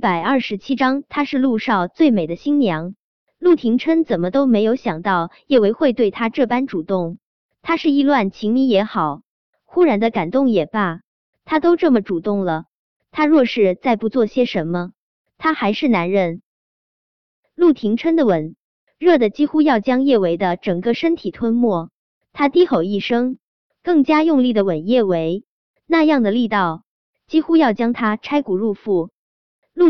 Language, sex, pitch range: Chinese, male, 195-285 Hz